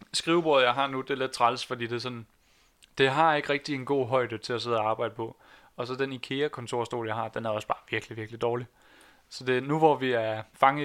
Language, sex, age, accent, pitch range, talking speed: Danish, male, 20-39, native, 120-140 Hz, 255 wpm